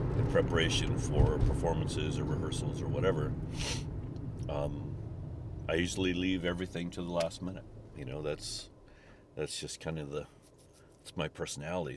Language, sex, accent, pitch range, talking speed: English, male, American, 85-130 Hz, 140 wpm